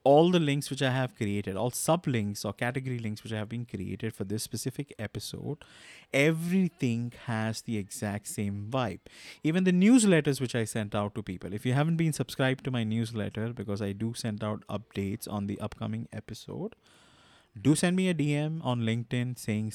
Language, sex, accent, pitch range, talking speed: English, male, Indian, 105-135 Hz, 185 wpm